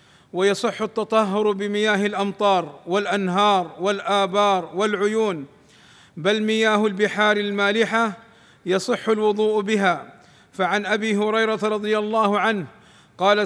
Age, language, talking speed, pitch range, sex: 50-69, Arabic, 95 wpm, 195-215 Hz, male